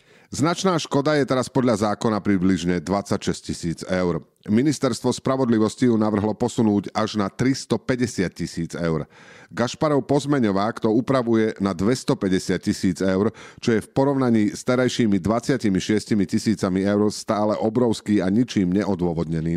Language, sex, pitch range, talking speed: Slovak, male, 95-125 Hz, 130 wpm